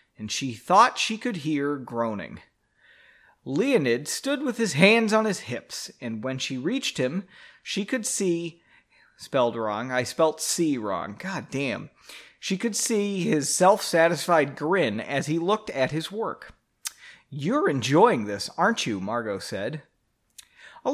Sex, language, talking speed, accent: male, English, 145 wpm, American